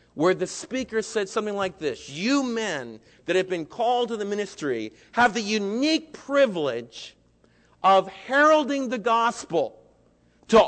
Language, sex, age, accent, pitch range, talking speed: English, male, 50-69, American, 190-295 Hz, 140 wpm